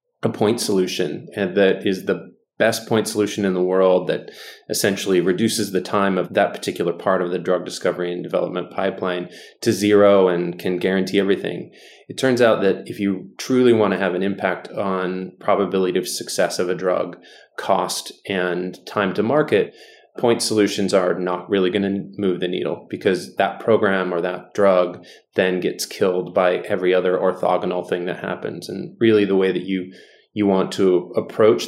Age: 20-39